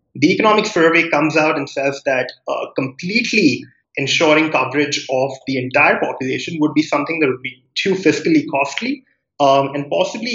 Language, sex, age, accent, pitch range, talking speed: English, male, 30-49, Indian, 130-165 Hz, 160 wpm